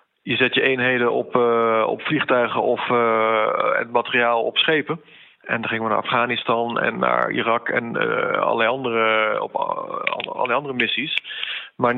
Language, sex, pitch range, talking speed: Dutch, male, 115-140 Hz, 165 wpm